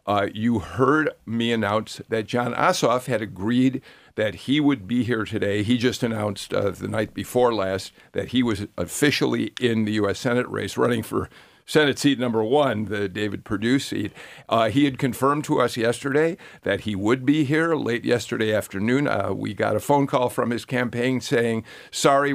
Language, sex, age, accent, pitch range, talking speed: English, male, 50-69, American, 105-130 Hz, 185 wpm